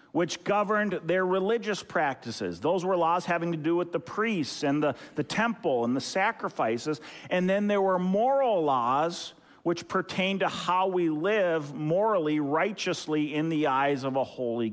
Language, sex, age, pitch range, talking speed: English, male, 50-69, 145-190 Hz, 165 wpm